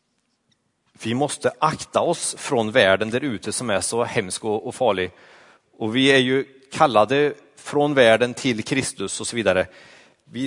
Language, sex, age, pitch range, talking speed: Swedish, male, 30-49, 120-155 Hz, 155 wpm